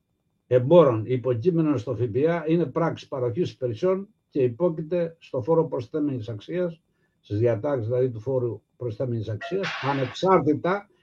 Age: 60-79